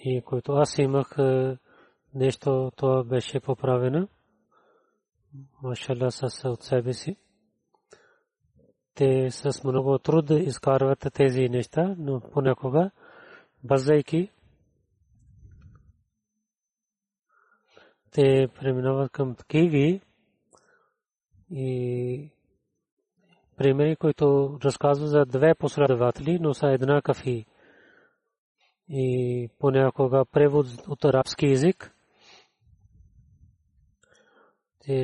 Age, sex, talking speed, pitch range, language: 30-49, male, 75 wpm, 130-155 Hz, Bulgarian